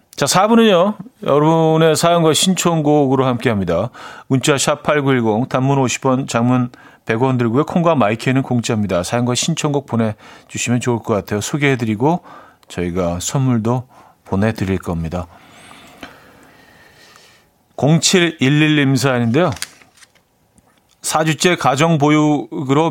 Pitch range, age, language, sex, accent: 120-160 Hz, 40-59, Korean, male, native